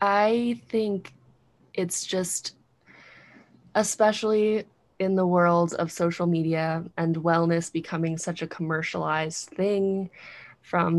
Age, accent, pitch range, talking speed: 20-39, American, 170-195 Hz, 105 wpm